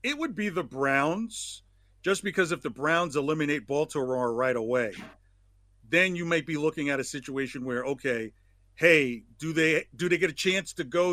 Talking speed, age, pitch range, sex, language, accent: 185 wpm, 50-69, 125-165 Hz, male, English, American